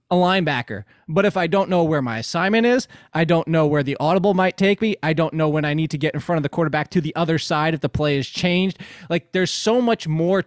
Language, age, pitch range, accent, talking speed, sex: English, 20-39, 140-180 Hz, American, 270 wpm, male